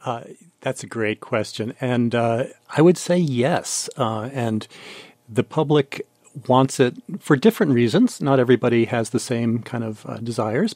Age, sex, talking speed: 40-59, male, 160 wpm